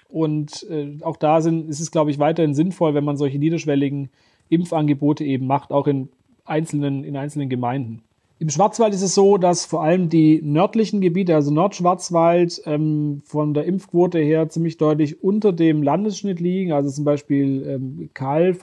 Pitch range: 145-170 Hz